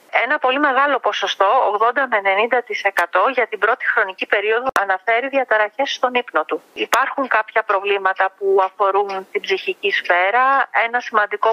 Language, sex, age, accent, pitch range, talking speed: Greek, female, 40-59, native, 210-260 Hz, 140 wpm